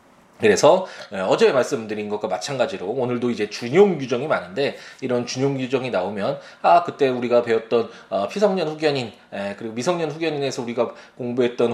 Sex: male